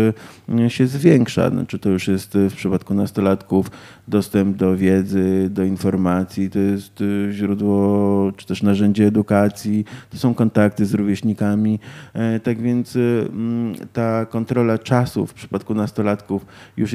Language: Polish